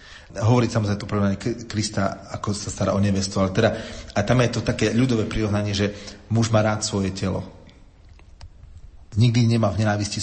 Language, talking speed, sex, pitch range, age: Slovak, 175 wpm, male, 95-115 Hz, 40-59